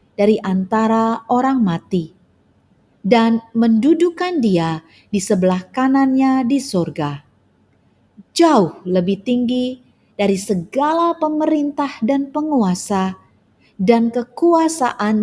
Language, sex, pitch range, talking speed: Indonesian, female, 185-260 Hz, 85 wpm